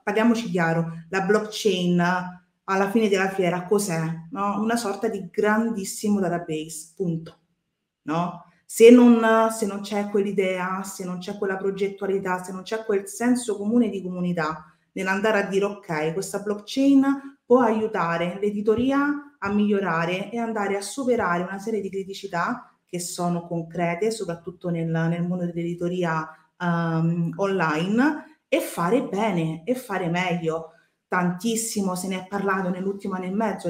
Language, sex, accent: Italian, female, native